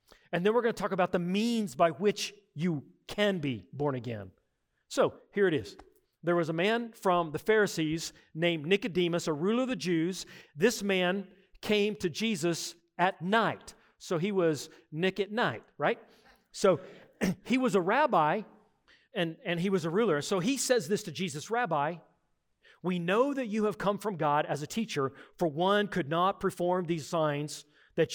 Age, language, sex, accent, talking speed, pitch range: 40-59, English, male, American, 180 wpm, 160-205 Hz